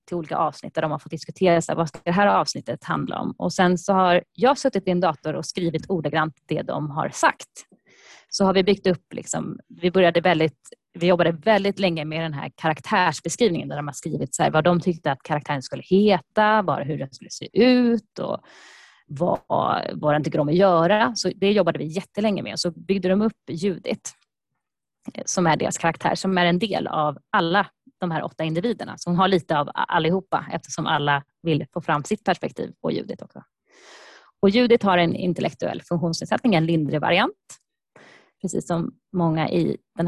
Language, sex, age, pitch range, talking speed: Swedish, female, 20-39, 160-195 Hz, 190 wpm